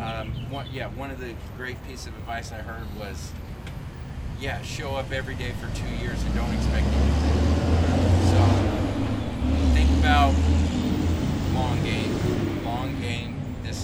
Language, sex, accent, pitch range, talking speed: English, male, American, 85-110 Hz, 140 wpm